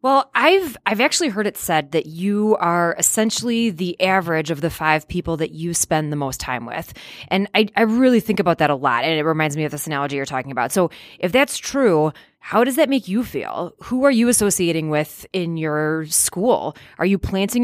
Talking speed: 220 wpm